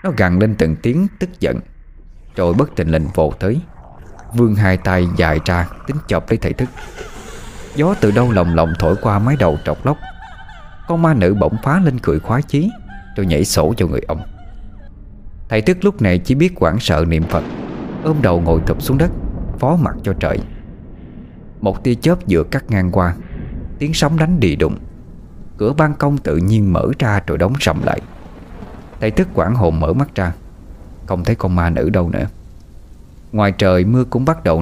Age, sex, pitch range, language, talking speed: 20-39, male, 85-120 Hz, Vietnamese, 195 wpm